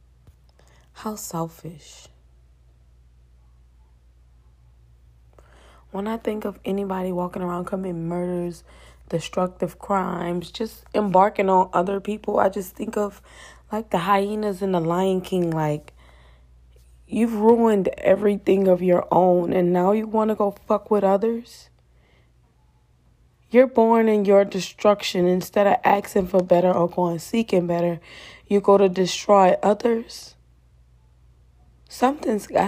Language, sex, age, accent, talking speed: English, female, 20-39, American, 120 wpm